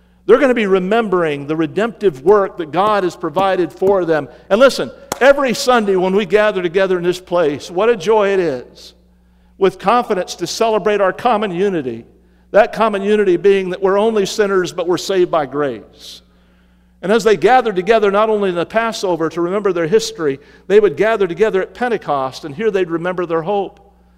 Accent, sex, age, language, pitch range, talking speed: American, male, 50-69, English, 150-210 Hz, 190 wpm